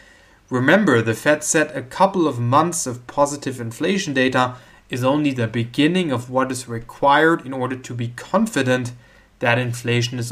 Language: English